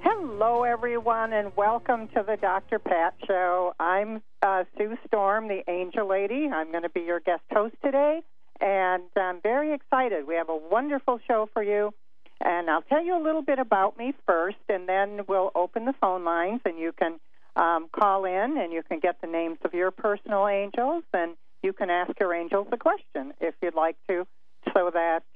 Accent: American